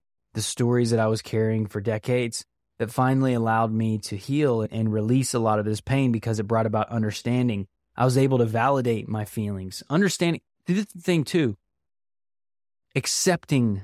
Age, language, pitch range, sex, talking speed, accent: 20-39, English, 110-135 Hz, male, 165 wpm, American